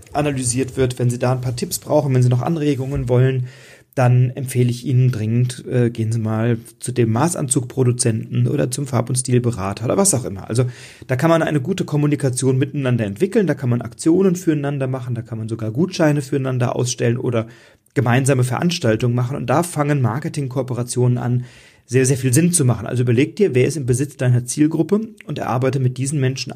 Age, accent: 40-59, German